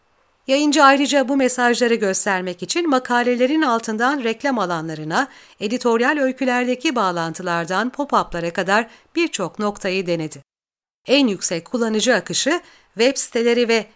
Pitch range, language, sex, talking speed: 195-270 Hz, Turkish, female, 110 wpm